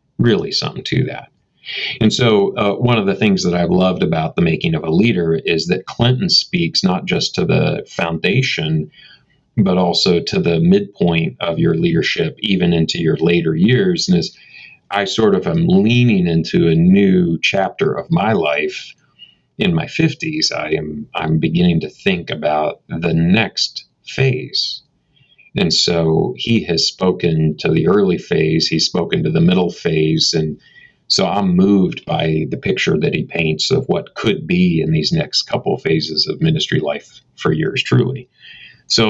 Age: 40-59